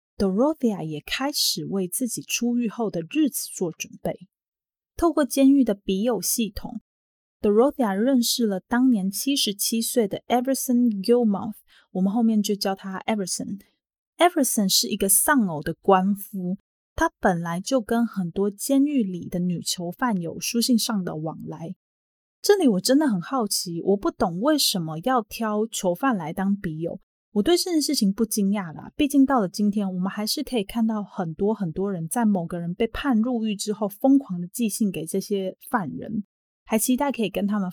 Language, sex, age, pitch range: Chinese, female, 20-39, 190-245 Hz